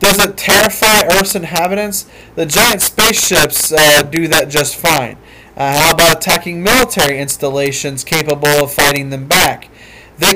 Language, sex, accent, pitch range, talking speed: English, male, American, 140-195 Hz, 145 wpm